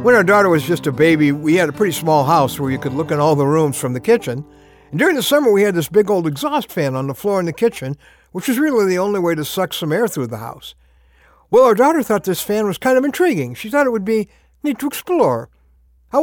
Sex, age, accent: male, 60-79, American